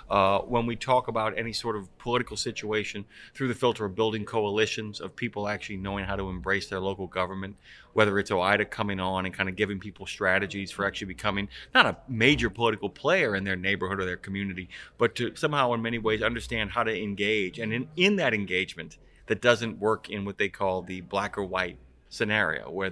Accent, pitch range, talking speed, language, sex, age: American, 100-125 Hz, 205 wpm, English, male, 30-49